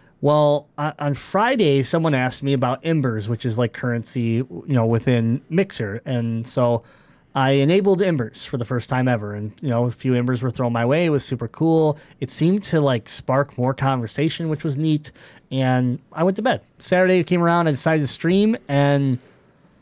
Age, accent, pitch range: 20-39, American, 125-155 Hz